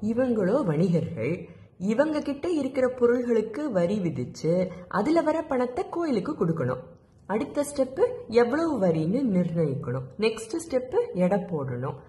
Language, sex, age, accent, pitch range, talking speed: Tamil, female, 30-49, native, 160-210 Hz, 100 wpm